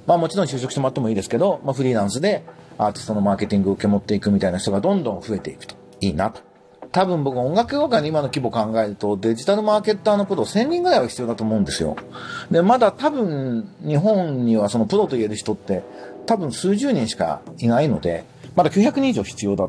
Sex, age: male, 40-59